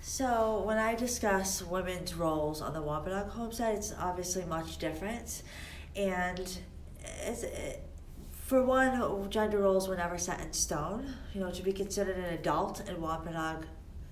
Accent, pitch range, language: American, 150-185 Hz, English